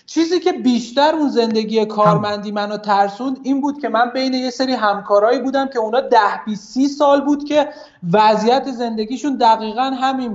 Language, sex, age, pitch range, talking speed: Persian, male, 30-49, 205-260 Hz, 155 wpm